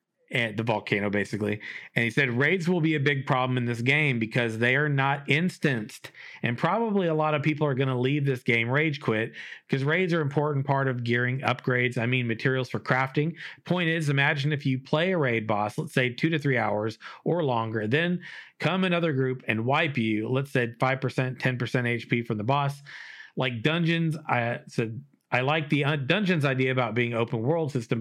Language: English